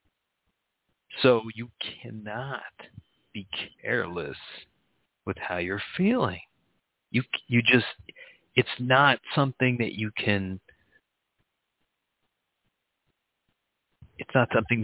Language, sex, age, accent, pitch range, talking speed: English, male, 40-59, American, 100-120 Hz, 85 wpm